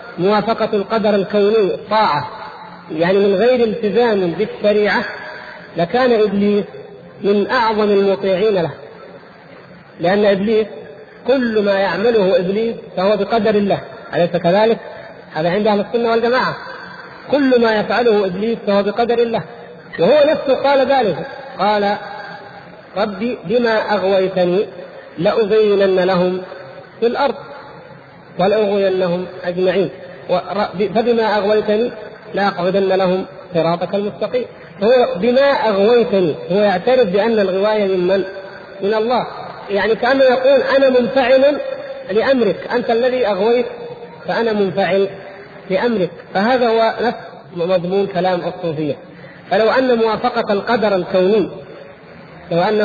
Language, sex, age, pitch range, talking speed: Arabic, male, 50-69, 190-230 Hz, 110 wpm